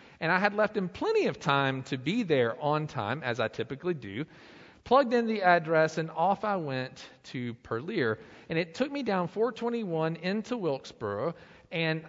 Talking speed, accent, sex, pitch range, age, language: 180 wpm, American, male, 135-200 Hz, 40-59, English